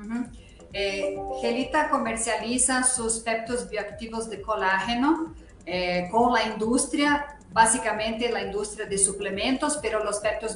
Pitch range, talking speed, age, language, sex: 200-240 Hz, 115 wpm, 40-59, Spanish, female